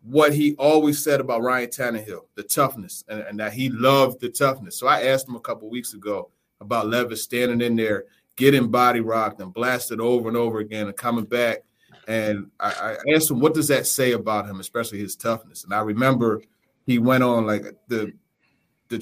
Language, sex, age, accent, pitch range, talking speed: English, male, 30-49, American, 110-145 Hz, 200 wpm